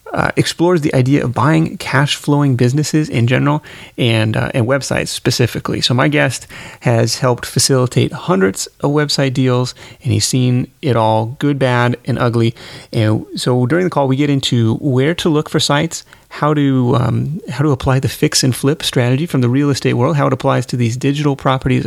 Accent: American